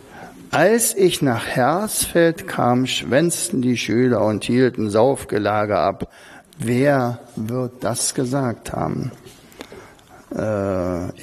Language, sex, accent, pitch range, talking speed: German, male, German, 115-155 Hz, 95 wpm